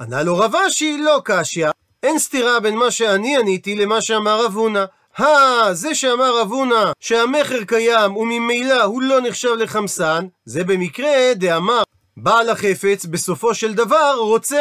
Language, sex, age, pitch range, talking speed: Hebrew, male, 40-59, 200-275 Hz, 150 wpm